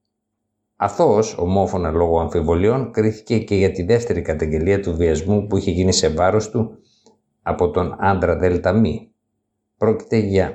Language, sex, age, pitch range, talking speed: Greek, male, 60-79, 90-110 Hz, 140 wpm